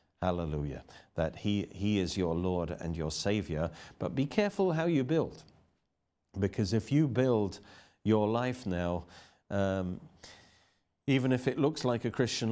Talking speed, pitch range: 150 wpm, 90-125 Hz